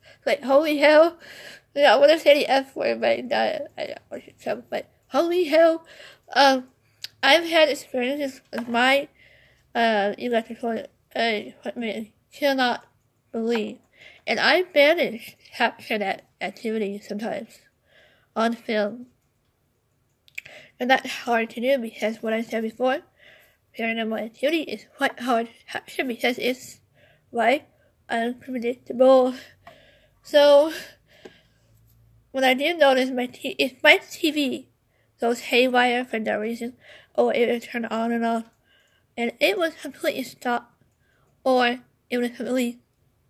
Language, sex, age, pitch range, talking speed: English, female, 50-69, 220-275 Hz, 125 wpm